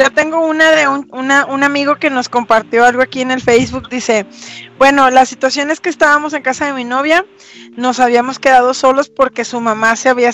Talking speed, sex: 215 wpm, female